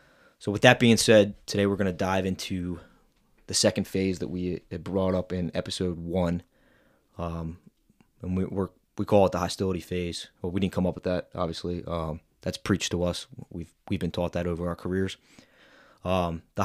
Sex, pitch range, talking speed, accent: male, 85-100 Hz, 195 wpm, American